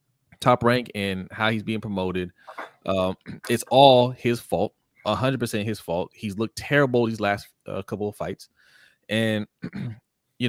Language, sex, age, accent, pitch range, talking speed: English, male, 20-39, American, 100-130 Hz, 155 wpm